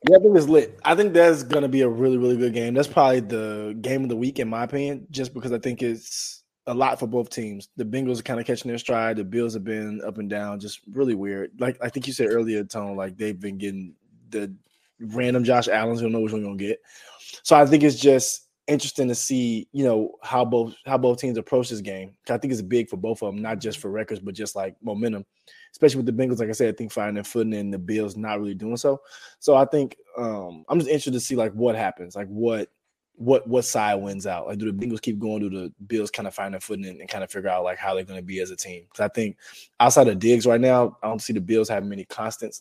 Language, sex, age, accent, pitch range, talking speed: English, male, 20-39, American, 105-125 Hz, 270 wpm